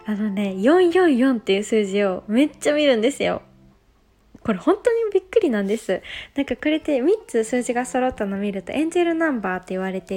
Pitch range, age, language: 205-295 Hz, 20-39, Japanese